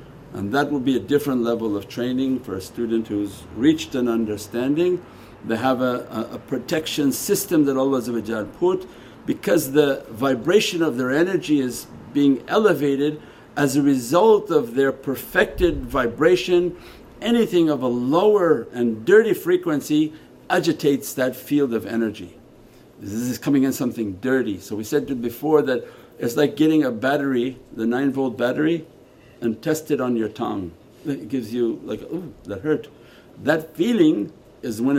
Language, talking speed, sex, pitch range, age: English, 155 wpm, male, 120-155 Hz, 50-69